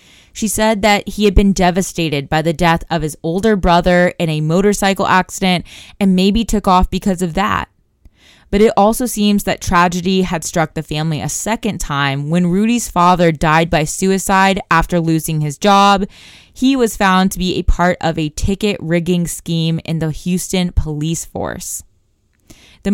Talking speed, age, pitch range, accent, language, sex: 175 wpm, 20-39, 165-205 Hz, American, English, female